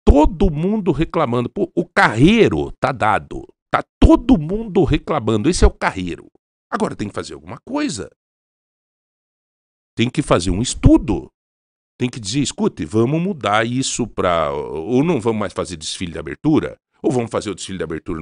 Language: Portuguese